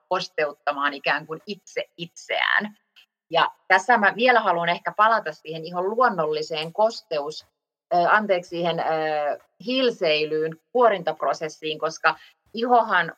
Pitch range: 155-210 Hz